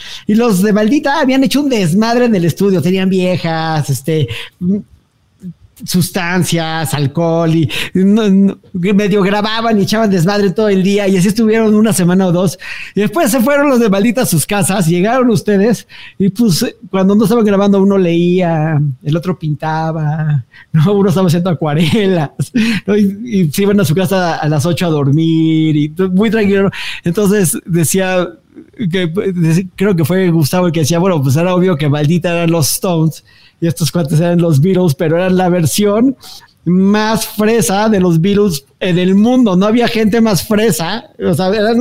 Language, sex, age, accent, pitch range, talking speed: English, male, 40-59, Mexican, 165-215 Hz, 170 wpm